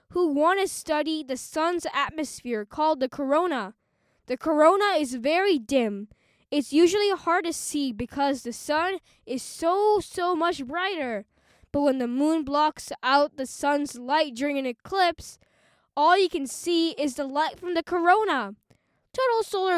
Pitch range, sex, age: 275-355 Hz, female, 10-29